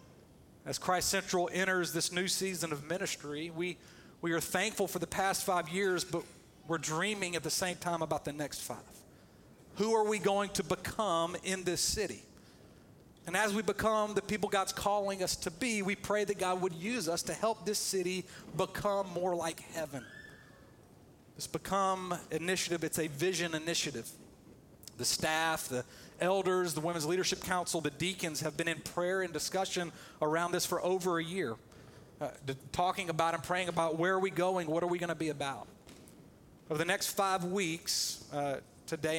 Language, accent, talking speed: English, American, 180 wpm